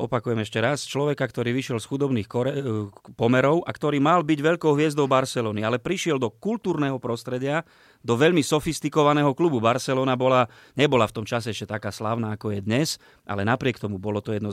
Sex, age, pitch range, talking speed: male, 30-49, 110-130 Hz, 180 wpm